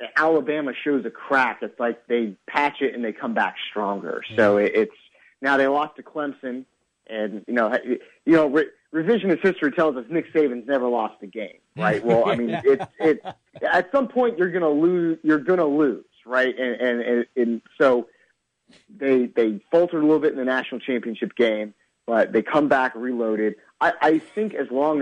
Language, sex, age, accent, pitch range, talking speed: English, male, 30-49, American, 120-160 Hz, 190 wpm